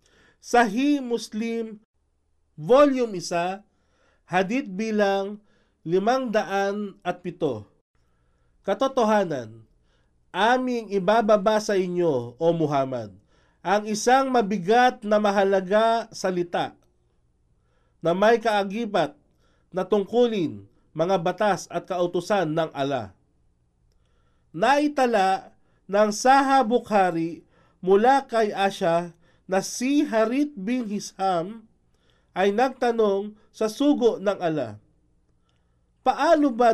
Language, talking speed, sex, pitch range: Filipino, 85 wpm, male, 155-230 Hz